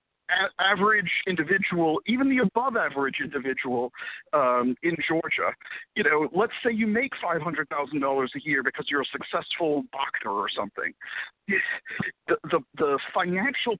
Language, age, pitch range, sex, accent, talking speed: English, 50-69, 165-230 Hz, male, American, 140 wpm